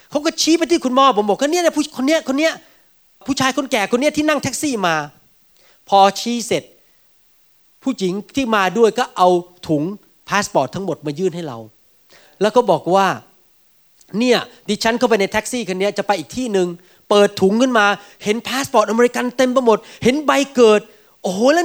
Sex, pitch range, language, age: male, 210-275 Hz, Thai, 30-49